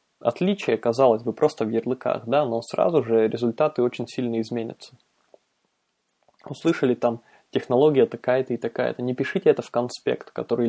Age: 20-39